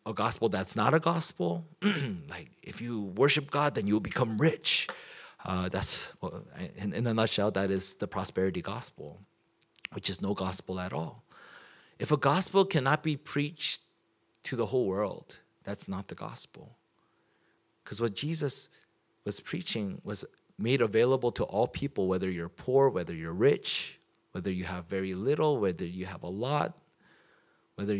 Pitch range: 100-150 Hz